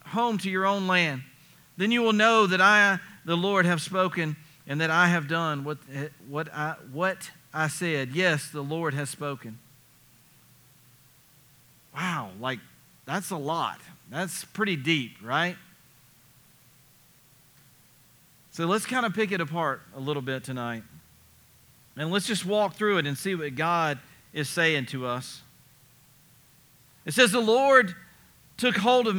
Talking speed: 150 wpm